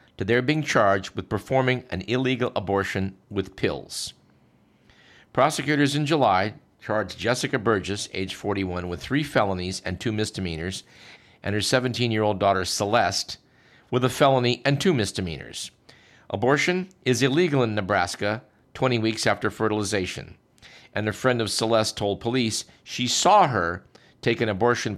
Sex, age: male, 50-69